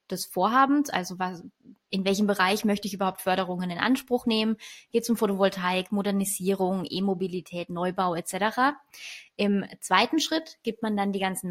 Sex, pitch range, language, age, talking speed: female, 190-235 Hz, German, 20-39, 155 wpm